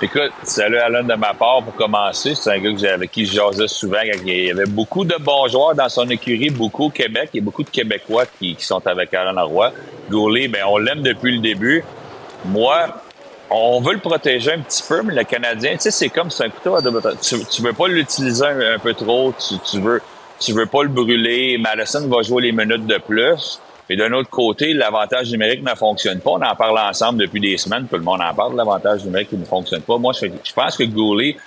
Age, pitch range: 30-49, 105-125 Hz